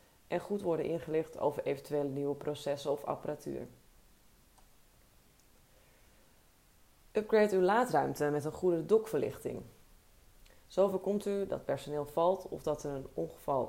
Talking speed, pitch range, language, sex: 125 wpm, 145-175 Hz, Dutch, female